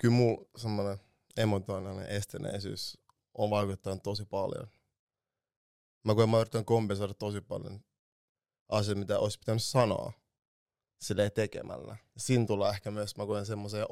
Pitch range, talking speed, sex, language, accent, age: 100-120 Hz, 125 wpm, male, Finnish, native, 20-39